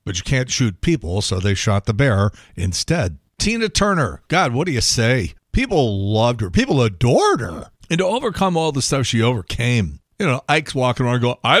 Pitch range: 105-145 Hz